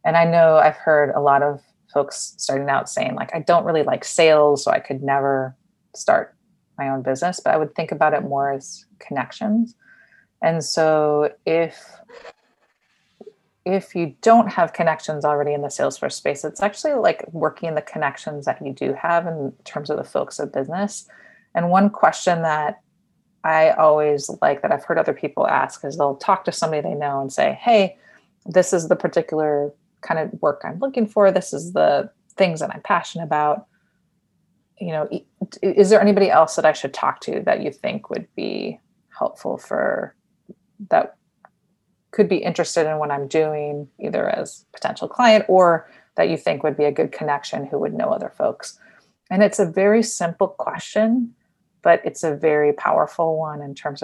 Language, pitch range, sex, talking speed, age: English, 150-195 Hz, female, 180 wpm, 30-49